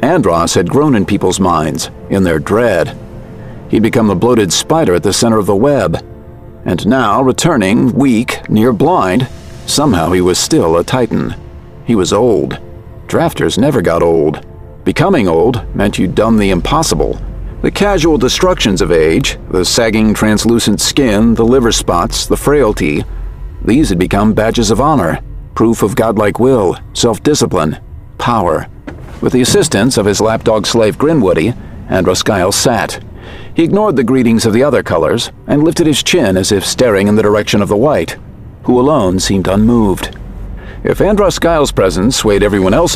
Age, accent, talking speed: 50-69, American, 160 wpm